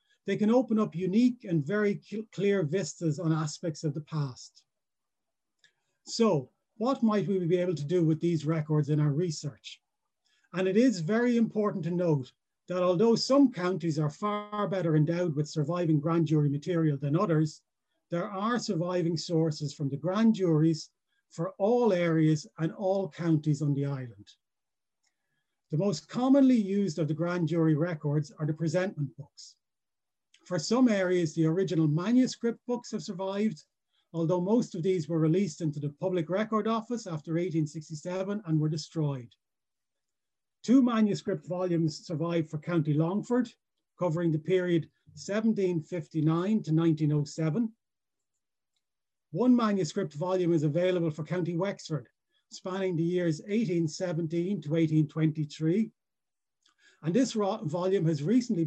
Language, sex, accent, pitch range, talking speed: English, male, Irish, 160-200 Hz, 140 wpm